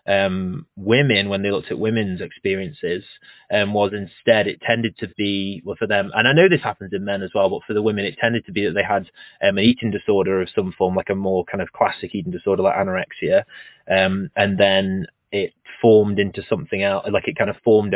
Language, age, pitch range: English, 20-39, 95-110 Hz